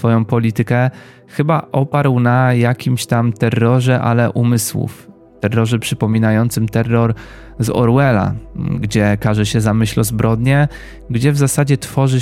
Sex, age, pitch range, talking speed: male, 20-39, 110-120 Hz, 130 wpm